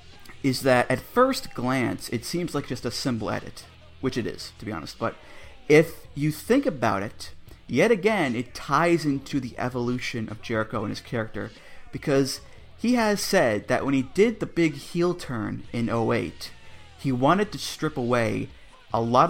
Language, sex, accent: English, male, American